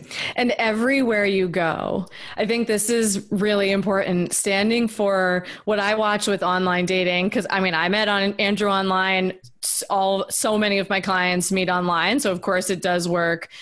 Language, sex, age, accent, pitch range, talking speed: English, female, 20-39, American, 185-240 Hz, 175 wpm